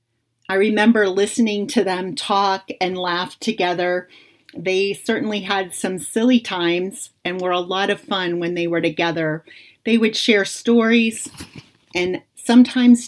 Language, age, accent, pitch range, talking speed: English, 40-59, American, 175-225 Hz, 140 wpm